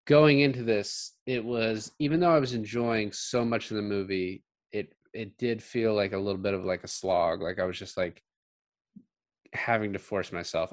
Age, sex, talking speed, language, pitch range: 20-39, male, 200 wpm, English, 95-130 Hz